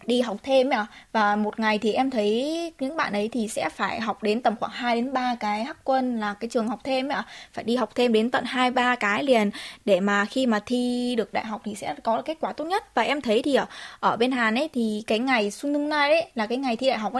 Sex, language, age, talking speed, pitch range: female, Vietnamese, 20-39, 280 wpm, 210-265 Hz